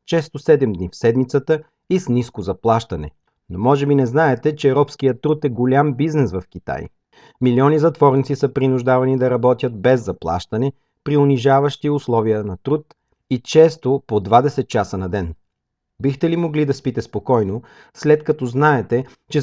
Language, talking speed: Bulgarian, 160 wpm